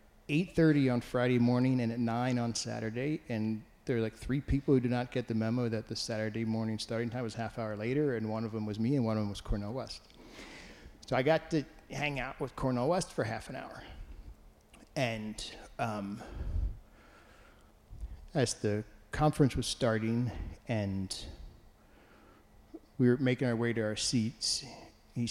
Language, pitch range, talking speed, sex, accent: English, 105-135 Hz, 175 wpm, male, American